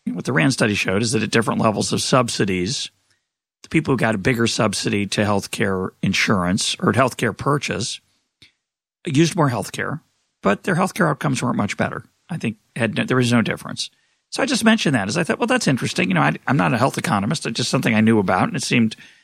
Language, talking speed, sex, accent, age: English, 220 wpm, male, American, 40-59